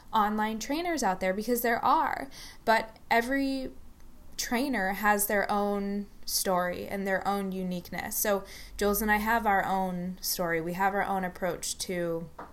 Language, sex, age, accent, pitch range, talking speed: English, female, 10-29, American, 180-220 Hz, 155 wpm